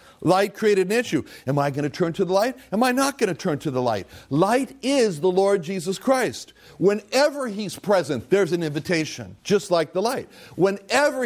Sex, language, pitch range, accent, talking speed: male, English, 165-230 Hz, American, 205 wpm